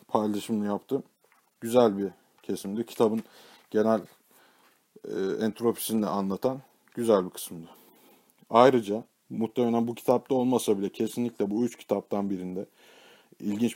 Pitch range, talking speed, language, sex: 100-115 Hz, 110 wpm, Turkish, male